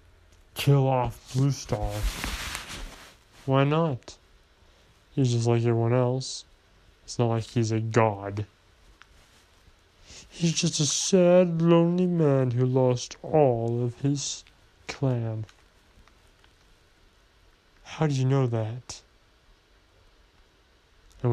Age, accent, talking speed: 20-39, American, 100 wpm